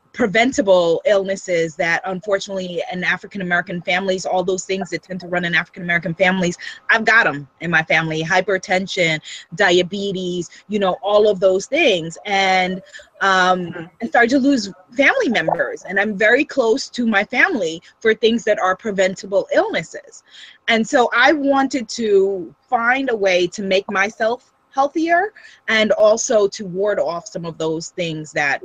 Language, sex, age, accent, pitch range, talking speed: English, female, 20-39, American, 185-240 Hz, 155 wpm